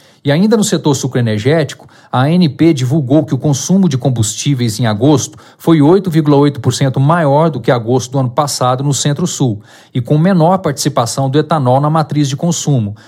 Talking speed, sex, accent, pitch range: 165 wpm, male, Brazilian, 130-165 Hz